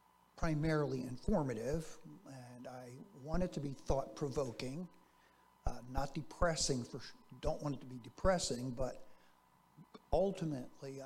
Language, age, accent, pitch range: English, 60-79, American, 130-165 Hz